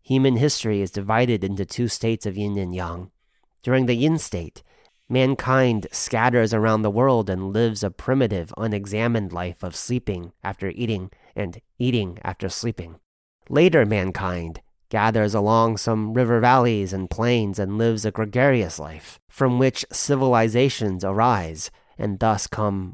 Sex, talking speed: male, 145 wpm